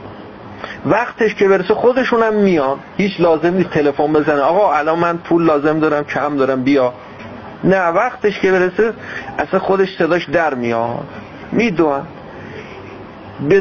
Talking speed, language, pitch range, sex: 130 wpm, Persian, 115-180 Hz, male